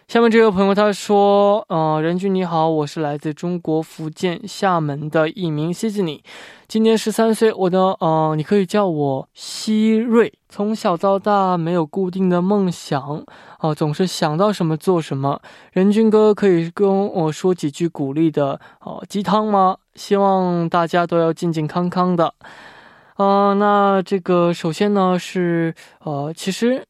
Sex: male